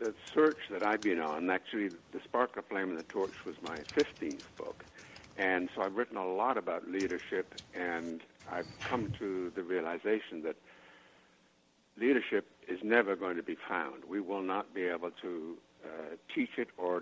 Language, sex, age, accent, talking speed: English, male, 70-89, American, 175 wpm